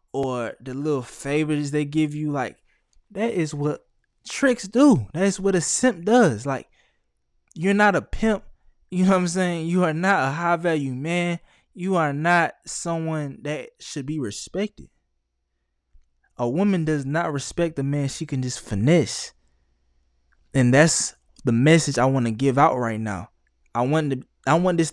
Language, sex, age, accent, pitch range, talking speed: English, male, 20-39, American, 110-165 Hz, 170 wpm